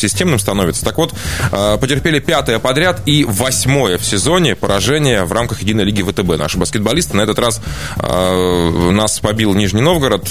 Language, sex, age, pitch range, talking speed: Russian, male, 20-39, 95-135 Hz, 150 wpm